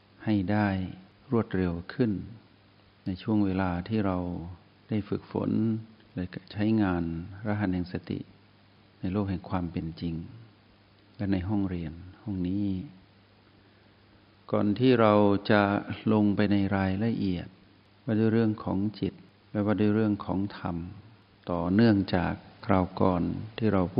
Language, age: Thai, 60-79